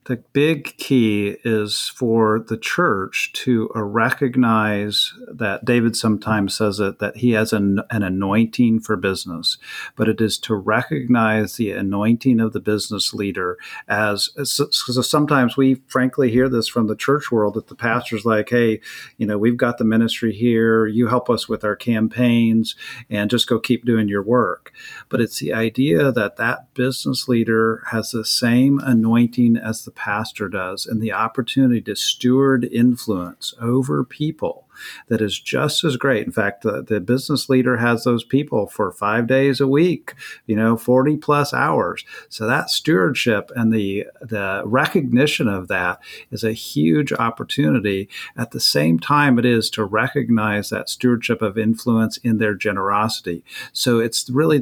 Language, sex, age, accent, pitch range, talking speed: English, male, 50-69, American, 110-125 Hz, 165 wpm